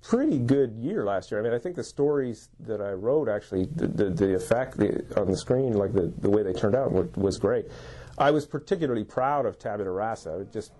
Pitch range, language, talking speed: 105-130 Hz, English, 220 wpm